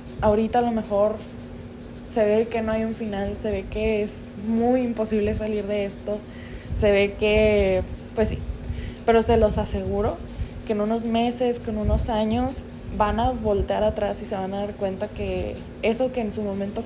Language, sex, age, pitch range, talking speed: Spanish, female, 20-39, 200-230 Hz, 185 wpm